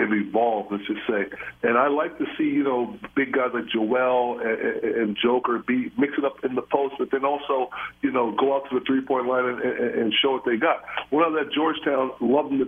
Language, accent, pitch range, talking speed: English, American, 120-140 Hz, 220 wpm